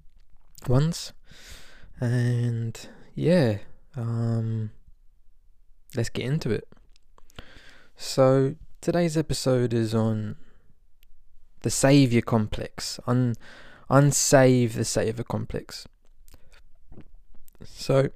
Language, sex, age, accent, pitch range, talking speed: English, male, 20-39, British, 110-150 Hz, 70 wpm